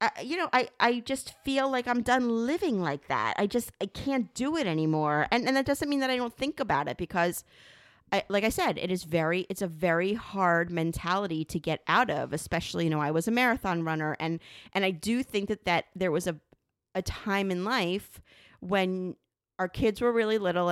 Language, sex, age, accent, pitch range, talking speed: English, female, 30-49, American, 170-230 Hz, 220 wpm